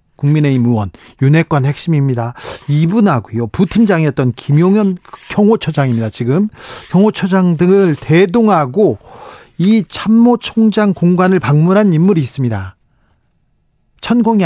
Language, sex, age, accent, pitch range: Korean, male, 40-59, native, 150-210 Hz